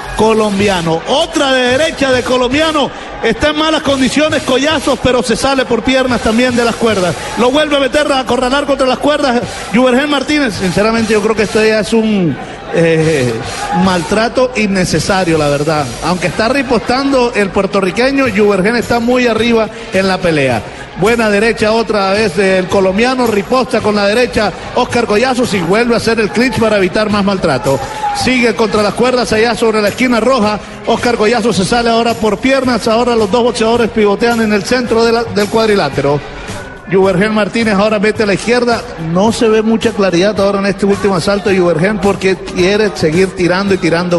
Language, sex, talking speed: Spanish, male, 180 wpm